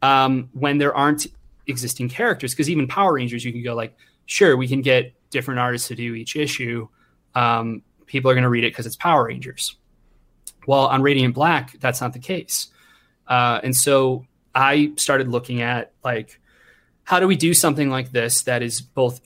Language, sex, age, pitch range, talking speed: English, male, 20-39, 120-140 Hz, 190 wpm